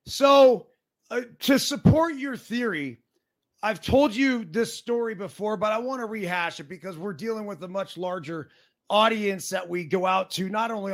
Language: English